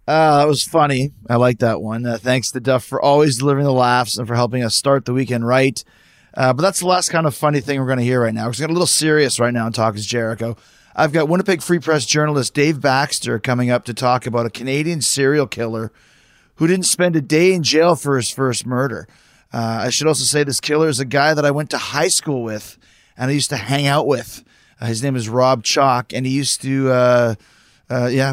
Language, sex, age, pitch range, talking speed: English, male, 30-49, 120-145 Hz, 250 wpm